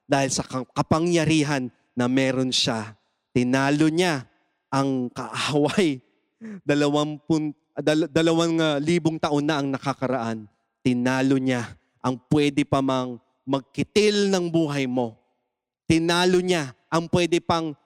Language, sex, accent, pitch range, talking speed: English, male, Filipino, 130-190 Hz, 105 wpm